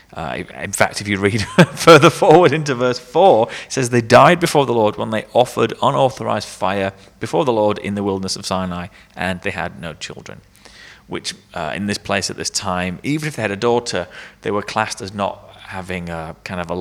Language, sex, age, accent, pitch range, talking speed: English, male, 30-49, British, 95-125 Hz, 215 wpm